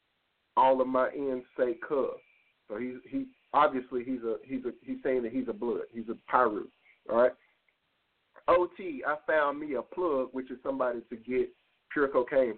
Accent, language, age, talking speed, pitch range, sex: American, English, 40-59, 180 wpm, 130-185 Hz, male